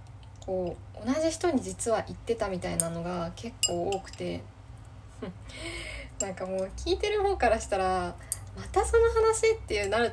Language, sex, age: Japanese, female, 20-39